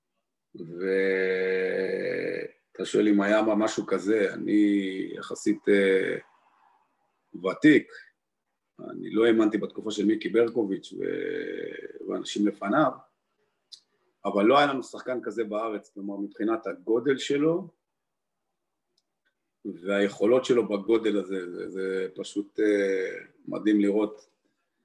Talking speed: 95 wpm